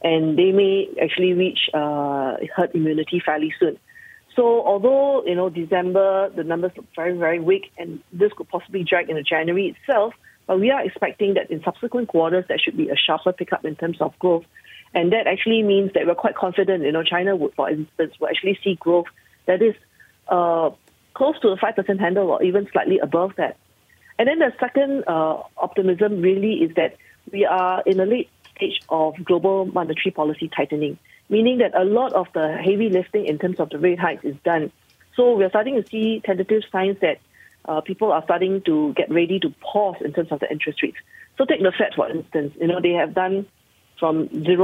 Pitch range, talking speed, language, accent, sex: 165-210 Hz, 200 wpm, English, Malaysian, female